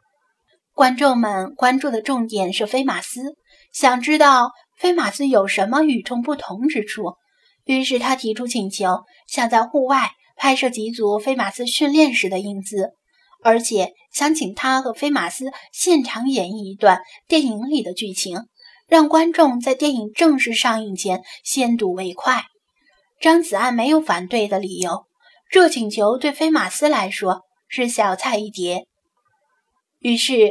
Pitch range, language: 210-285 Hz, Chinese